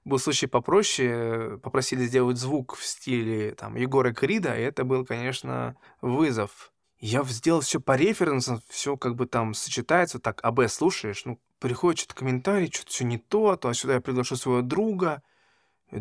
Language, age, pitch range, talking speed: Russian, 20-39, 115-150 Hz, 170 wpm